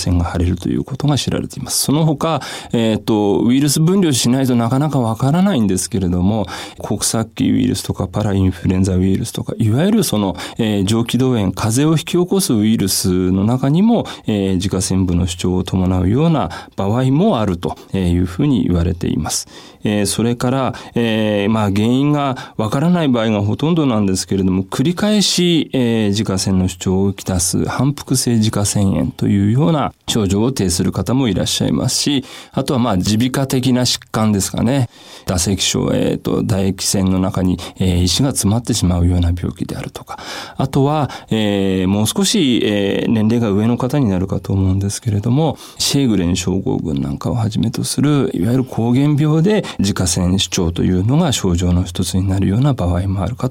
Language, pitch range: Japanese, 95-130 Hz